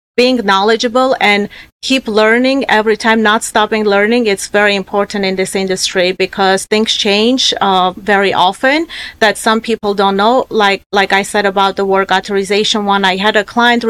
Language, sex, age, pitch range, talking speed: English, female, 30-49, 190-225 Hz, 175 wpm